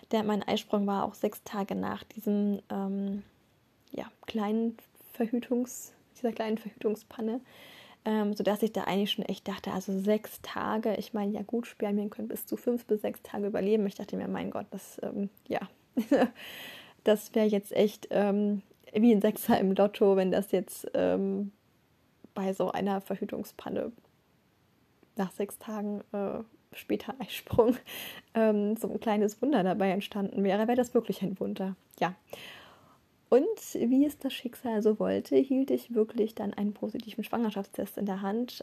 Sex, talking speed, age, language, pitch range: female, 150 wpm, 10-29, German, 200-225 Hz